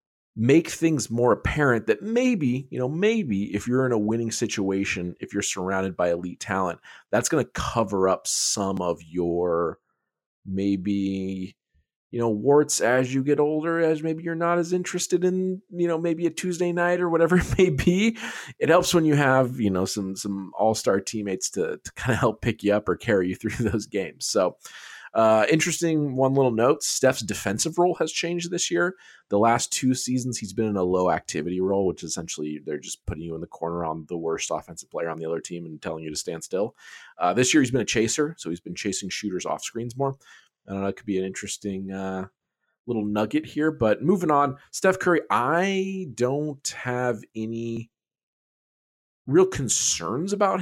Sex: male